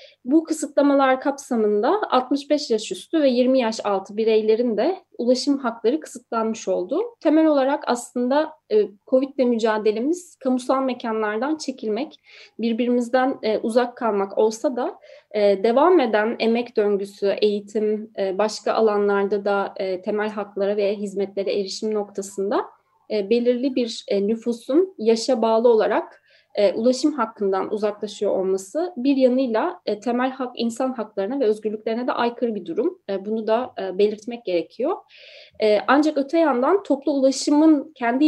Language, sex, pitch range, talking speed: Turkish, female, 210-280 Hz, 125 wpm